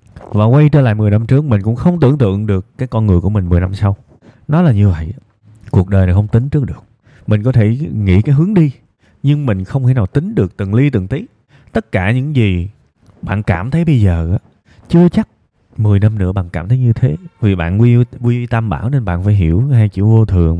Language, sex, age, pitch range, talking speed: Vietnamese, male, 20-39, 105-140 Hz, 240 wpm